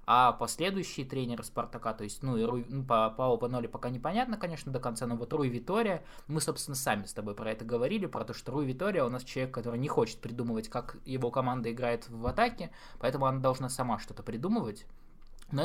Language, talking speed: Russian, 210 wpm